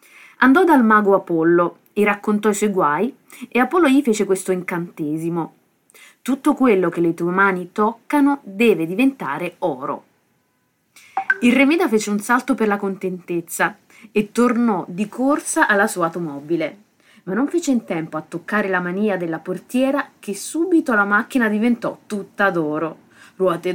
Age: 30-49